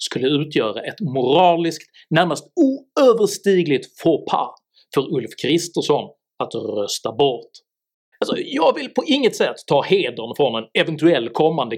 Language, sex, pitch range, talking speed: Swedish, male, 155-220 Hz, 125 wpm